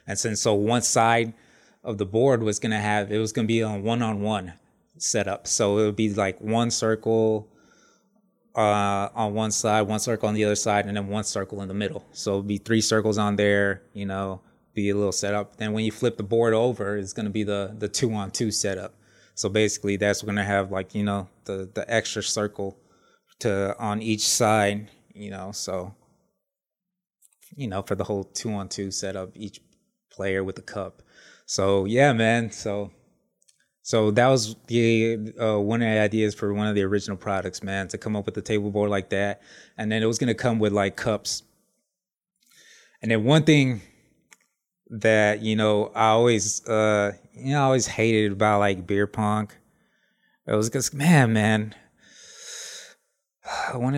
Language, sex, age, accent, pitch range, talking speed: English, male, 20-39, American, 100-115 Hz, 180 wpm